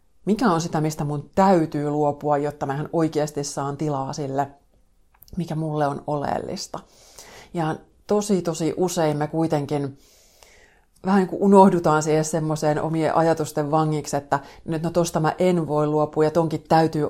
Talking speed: 150 wpm